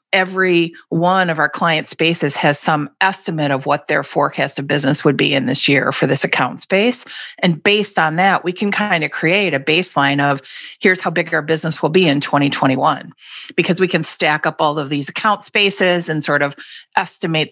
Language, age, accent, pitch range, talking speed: English, 50-69, American, 150-190 Hz, 200 wpm